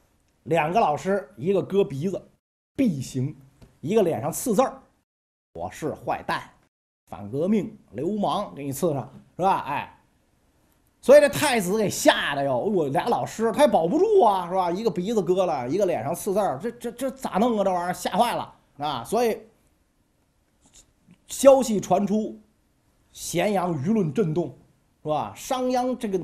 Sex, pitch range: male, 150-240 Hz